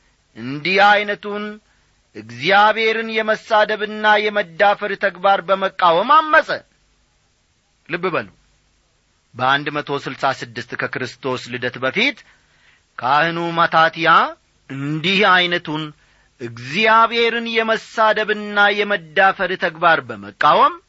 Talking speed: 65 wpm